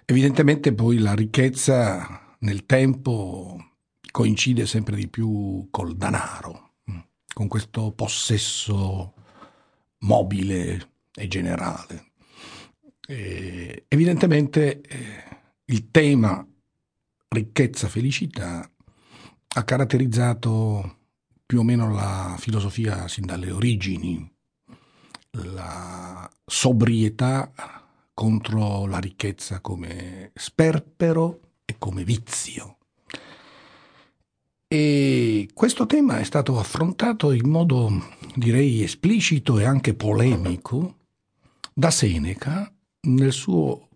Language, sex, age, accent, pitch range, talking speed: Italian, male, 50-69, native, 95-135 Hz, 80 wpm